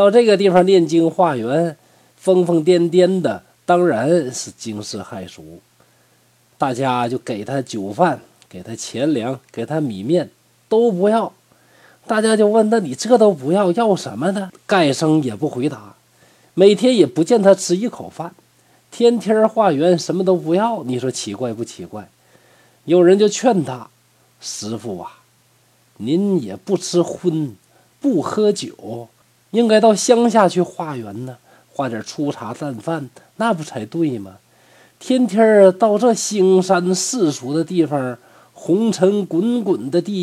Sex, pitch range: male, 125-190 Hz